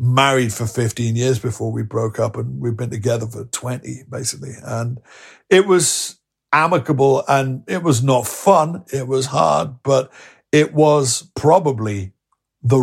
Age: 50-69